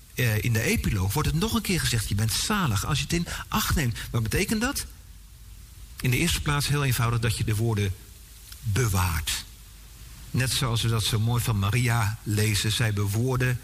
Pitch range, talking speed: 100-140 Hz, 190 wpm